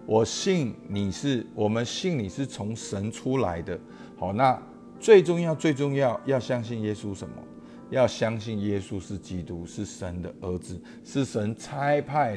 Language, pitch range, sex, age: Chinese, 100-140 Hz, male, 50-69